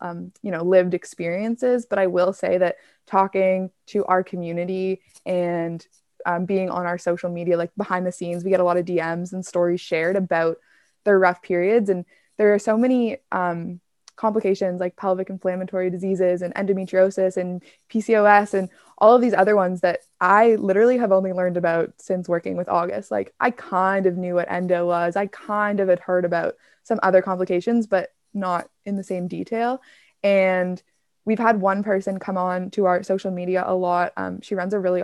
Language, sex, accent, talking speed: English, female, American, 190 wpm